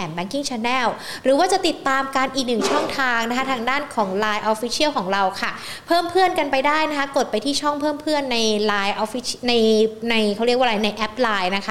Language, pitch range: Thai, 210-270 Hz